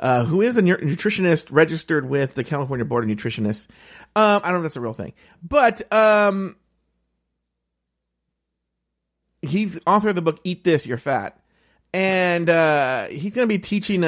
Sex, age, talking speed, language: male, 40-59, 175 wpm, English